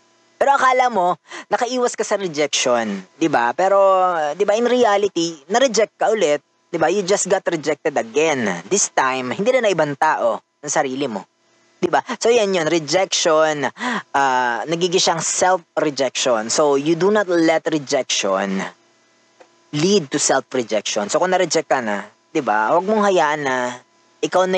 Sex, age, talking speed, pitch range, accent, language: female, 20-39, 165 wpm, 130-180 Hz, native, Filipino